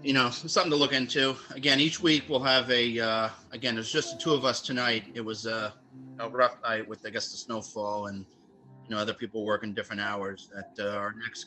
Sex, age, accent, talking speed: male, 30-49, American, 230 wpm